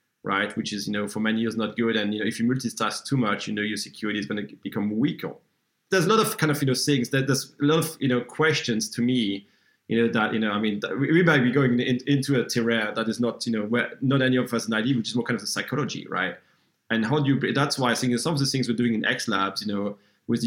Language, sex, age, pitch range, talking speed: English, male, 30-49, 110-130 Hz, 295 wpm